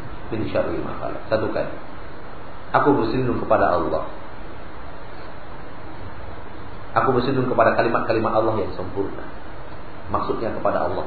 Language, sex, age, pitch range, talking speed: Malay, male, 40-59, 95-115 Hz, 90 wpm